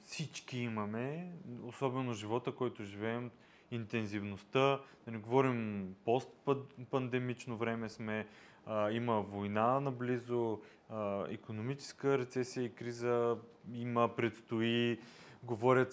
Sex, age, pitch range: male, 20-39, 115-135 Hz